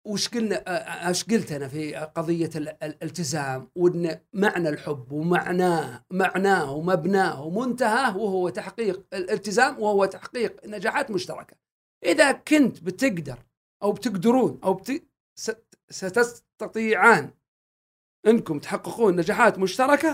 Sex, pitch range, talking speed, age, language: male, 155-215 Hz, 90 wpm, 50-69, Arabic